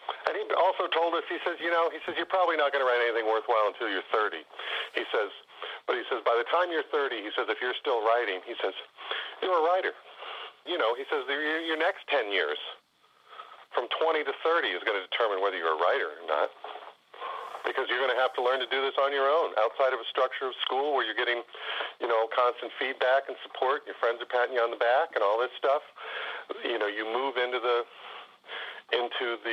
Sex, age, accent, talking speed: male, 50-69, American, 230 wpm